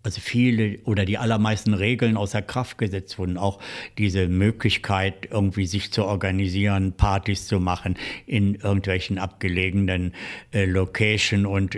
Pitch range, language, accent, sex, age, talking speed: 95-105 Hz, German, German, male, 60-79, 130 wpm